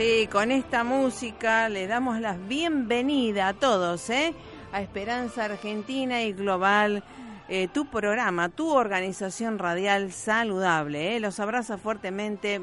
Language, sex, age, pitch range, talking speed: Spanish, female, 50-69, 190-235 Hz, 115 wpm